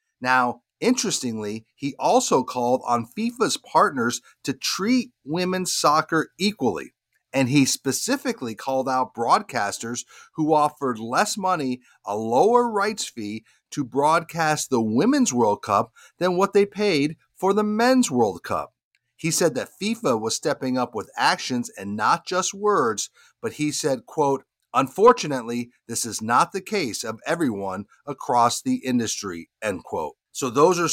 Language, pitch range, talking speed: English, 125-190 Hz, 145 wpm